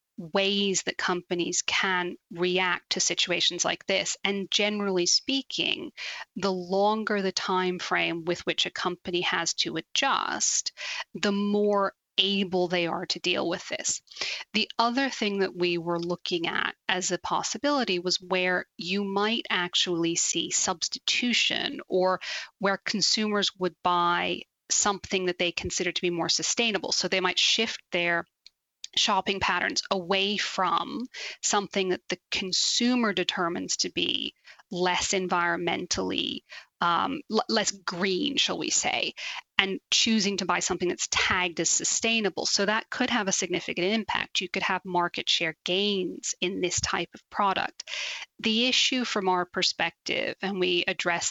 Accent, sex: American, female